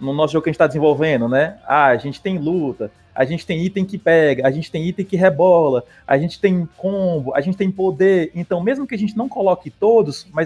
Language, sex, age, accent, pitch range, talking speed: Portuguese, male, 20-39, Brazilian, 145-195 Hz, 245 wpm